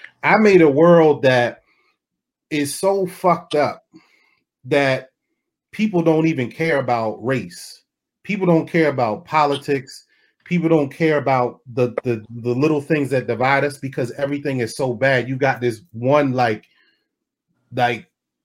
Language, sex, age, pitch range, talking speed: English, male, 30-49, 120-155 Hz, 140 wpm